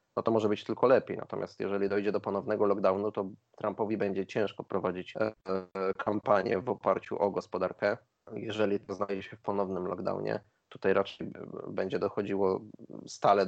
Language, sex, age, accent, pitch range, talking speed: Polish, male, 20-39, native, 95-110 Hz, 150 wpm